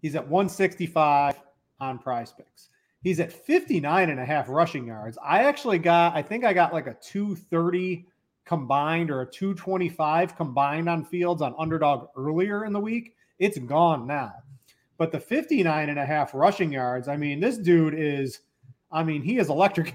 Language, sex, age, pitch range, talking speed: English, male, 30-49, 145-175 Hz, 175 wpm